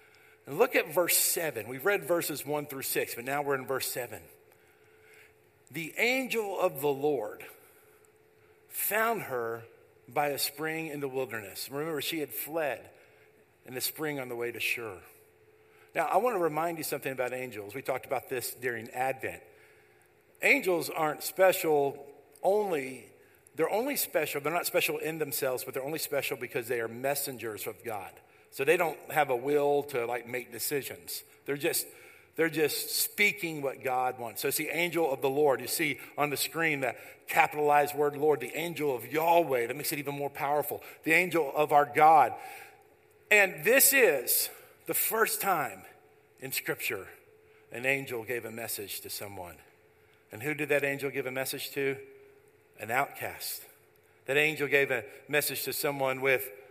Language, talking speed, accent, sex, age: English, 170 wpm, American, male, 50-69